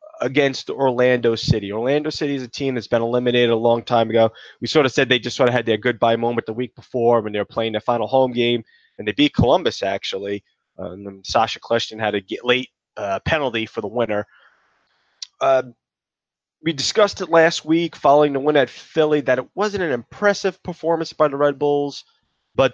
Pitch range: 115-150 Hz